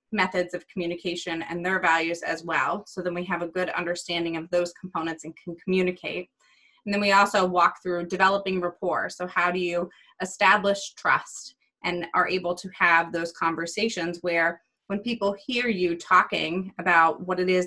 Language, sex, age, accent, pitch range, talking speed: English, female, 20-39, American, 170-195 Hz, 175 wpm